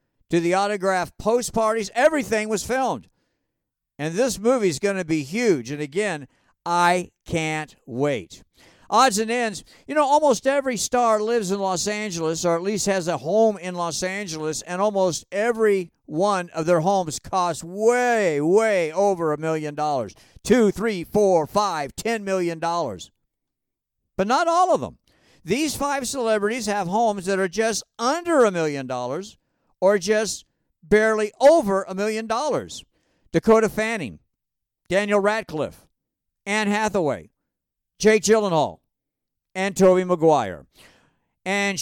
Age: 50-69